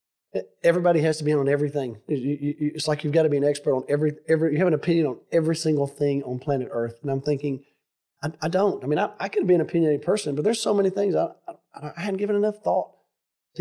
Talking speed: 245 wpm